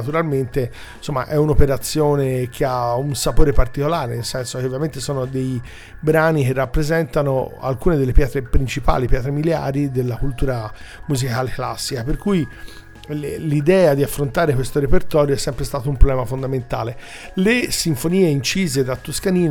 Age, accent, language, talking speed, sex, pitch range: 40-59, native, Italian, 145 wpm, male, 130-155 Hz